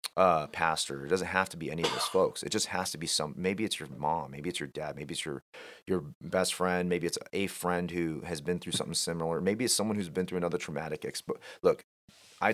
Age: 30-49